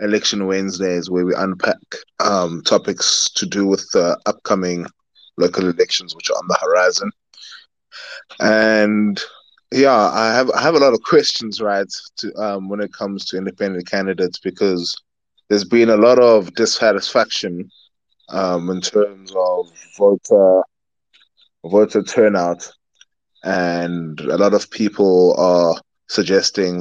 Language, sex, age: English, male, 20-39